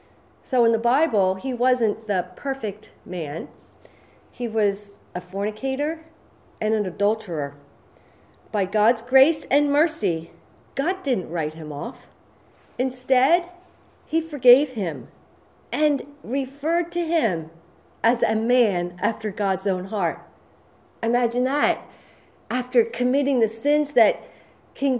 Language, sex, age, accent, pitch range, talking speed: English, female, 40-59, American, 195-270 Hz, 120 wpm